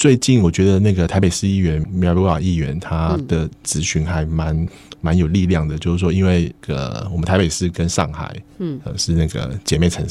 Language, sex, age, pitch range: Chinese, male, 20-39, 80-95 Hz